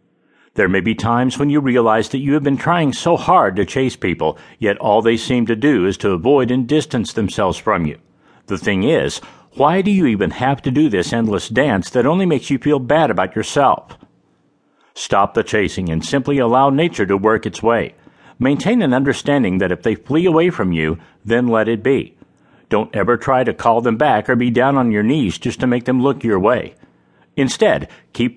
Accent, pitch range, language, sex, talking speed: American, 110-140 Hz, English, male, 210 wpm